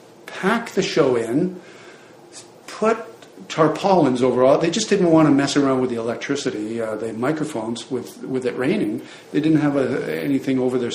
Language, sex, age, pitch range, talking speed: English, male, 50-69, 130-185 Hz, 175 wpm